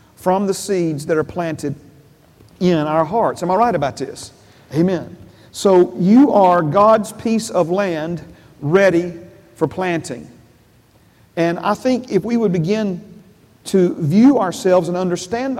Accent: American